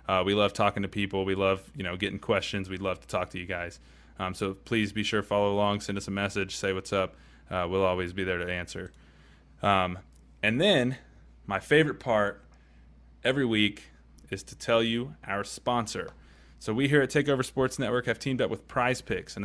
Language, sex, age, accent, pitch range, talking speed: English, male, 20-39, American, 95-115 Hz, 215 wpm